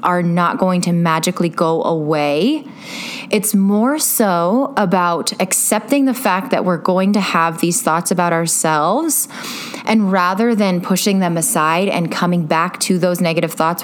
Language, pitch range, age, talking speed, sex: English, 185-240 Hz, 20-39, 155 wpm, female